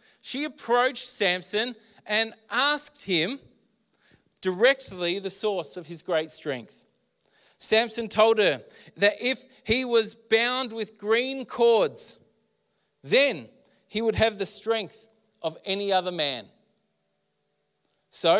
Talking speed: 115 wpm